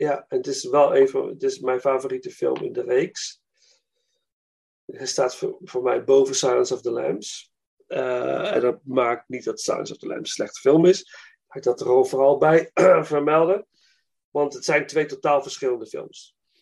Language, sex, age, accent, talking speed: Dutch, male, 40-59, Dutch, 185 wpm